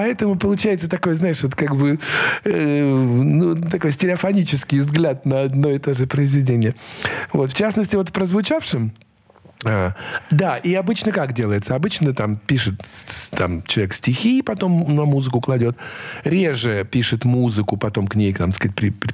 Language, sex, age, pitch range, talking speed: Russian, male, 50-69, 120-175 Hz, 150 wpm